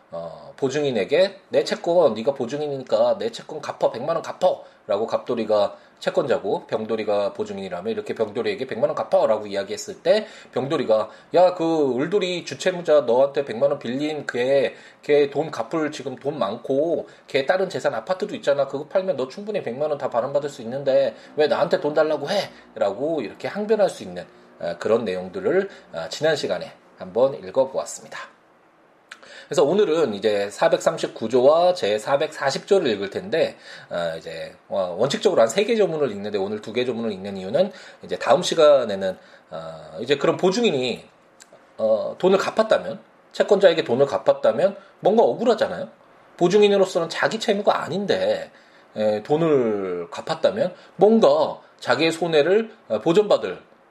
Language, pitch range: Korean, 135-205 Hz